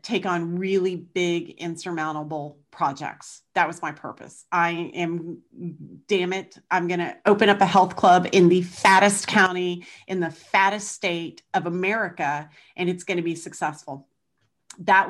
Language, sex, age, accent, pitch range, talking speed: English, female, 40-59, American, 165-195 Hz, 155 wpm